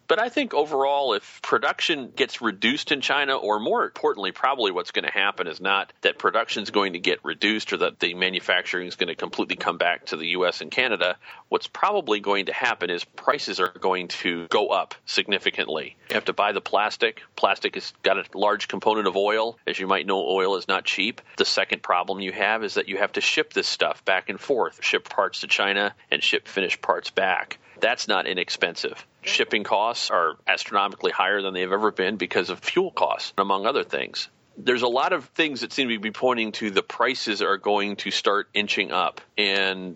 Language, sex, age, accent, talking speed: English, male, 40-59, American, 210 wpm